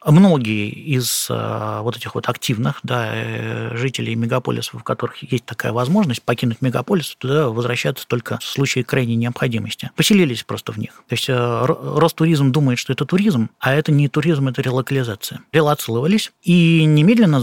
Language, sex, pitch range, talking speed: Russian, male, 120-150 Hz, 150 wpm